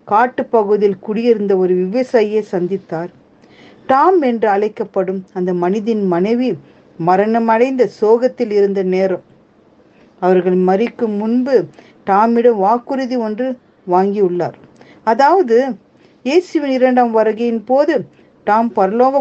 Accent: native